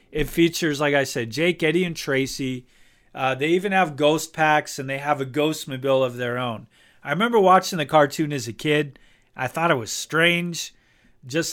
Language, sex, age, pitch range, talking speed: English, male, 40-59, 130-170 Hz, 200 wpm